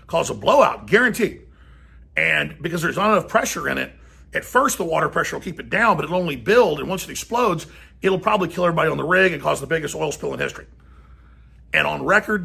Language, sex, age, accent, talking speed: English, male, 50-69, American, 225 wpm